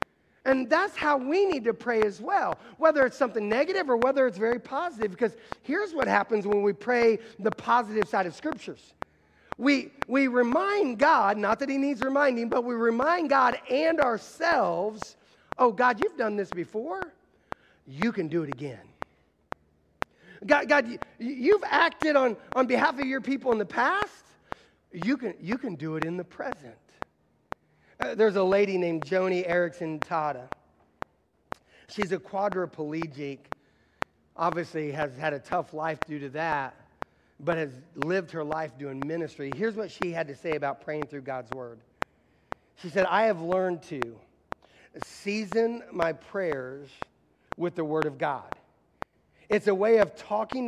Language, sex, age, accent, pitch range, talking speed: English, male, 40-59, American, 165-250 Hz, 160 wpm